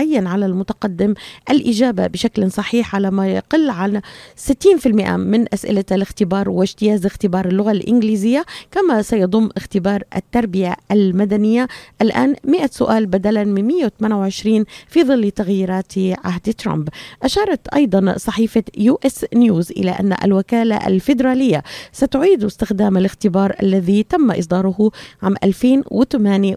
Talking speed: 115 wpm